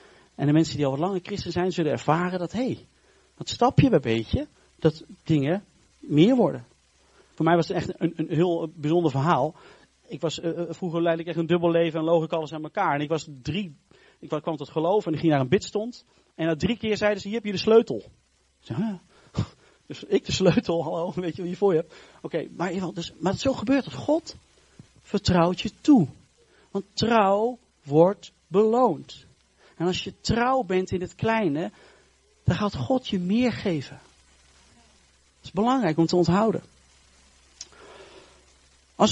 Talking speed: 185 wpm